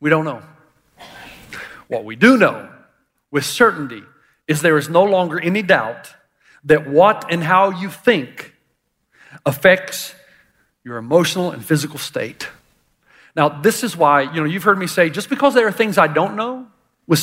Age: 40-59